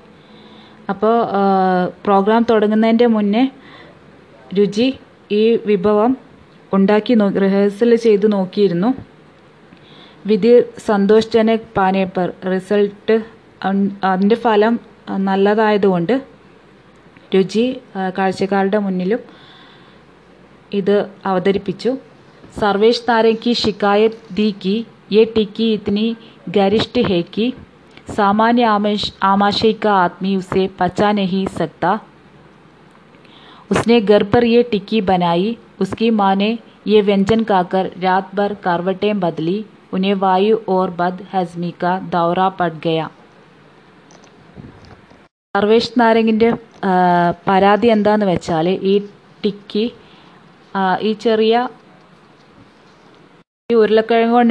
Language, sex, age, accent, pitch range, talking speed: Hindi, female, 20-39, native, 190-225 Hz, 60 wpm